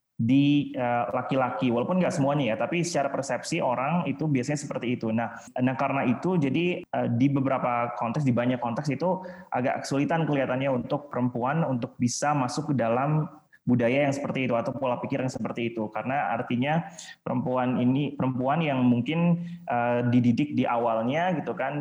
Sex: male